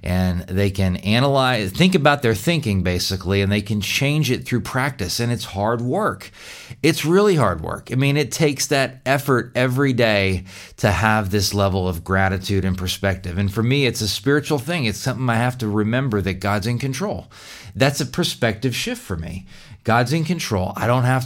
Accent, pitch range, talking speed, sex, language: American, 95-120 Hz, 195 wpm, male, English